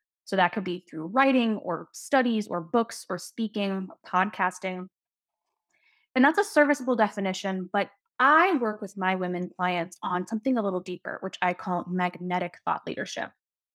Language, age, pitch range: English, 20-39, 185-240 Hz